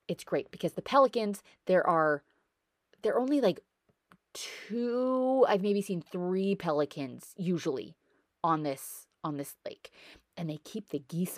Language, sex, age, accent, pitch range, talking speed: English, female, 30-49, American, 155-245 Hz, 150 wpm